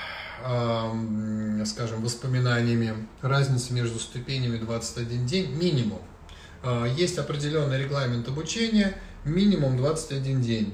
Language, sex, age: Russian, male, 20-39